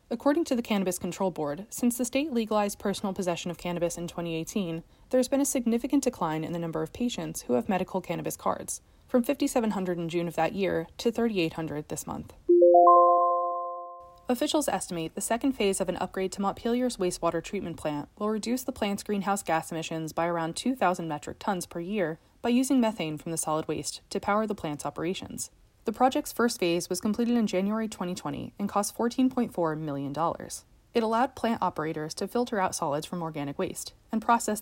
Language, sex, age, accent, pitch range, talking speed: English, female, 20-39, American, 170-220 Hz, 190 wpm